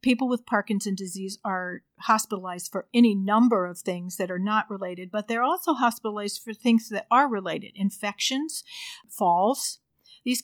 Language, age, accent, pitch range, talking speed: English, 50-69, American, 195-230 Hz, 155 wpm